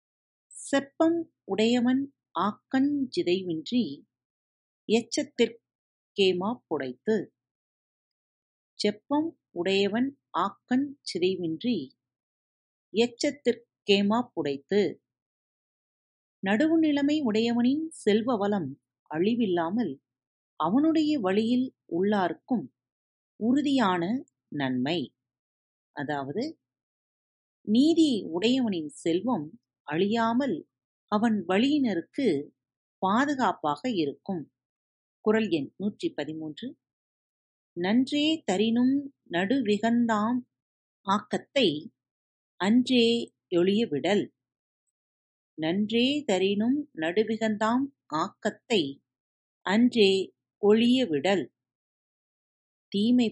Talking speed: 50 wpm